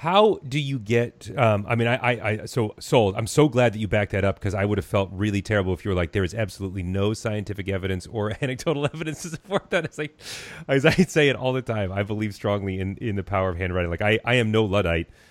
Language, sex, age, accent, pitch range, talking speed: English, male, 30-49, American, 90-110 Hz, 260 wpm